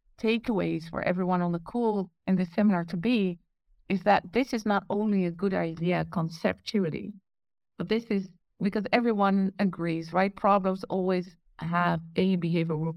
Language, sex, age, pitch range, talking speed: English, female, 50-69, 170-210 Hz, 155 wpm